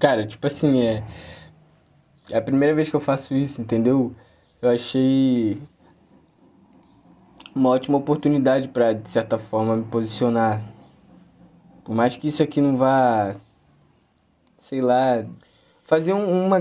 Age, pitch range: 20-39, 115-145 Hz